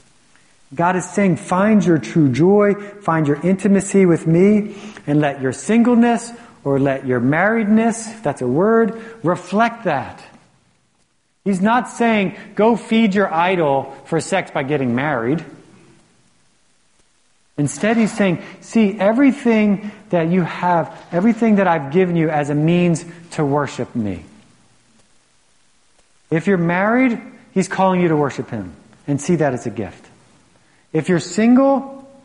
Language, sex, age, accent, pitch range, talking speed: English, male, 40-59, American, 145-205 Hz, 140 wpm